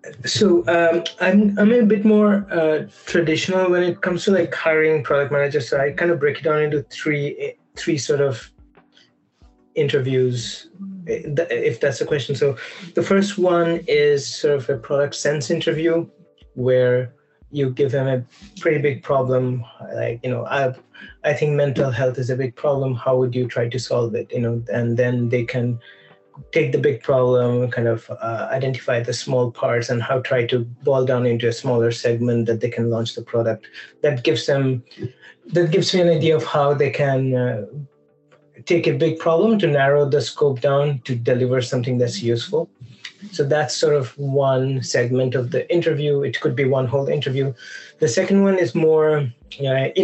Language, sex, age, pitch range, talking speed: English, male, 30-49, 125-160 Hz, 185 wpm